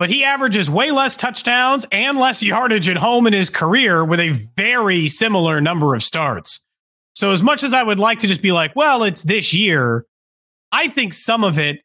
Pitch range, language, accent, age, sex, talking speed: 170-235 Hz, English, American, 30-49, male, 210 wpm